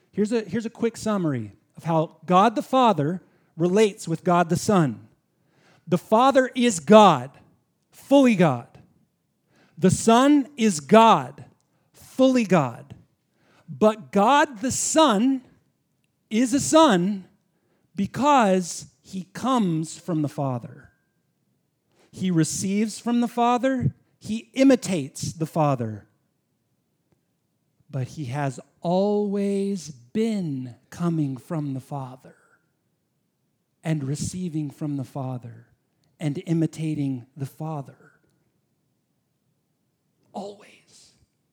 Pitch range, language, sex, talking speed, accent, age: 155-240 Hz, English, male, 100 wpm, American, 50-69